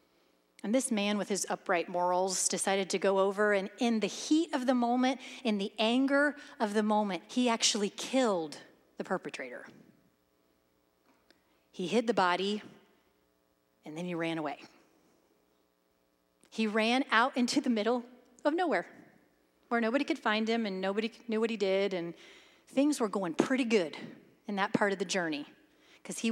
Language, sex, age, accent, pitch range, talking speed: English, female, 30-49, American, 155-225 Hz, 160 wpm